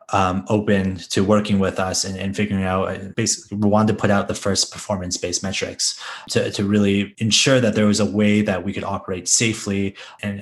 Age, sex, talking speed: 20-39, male, 205 wpm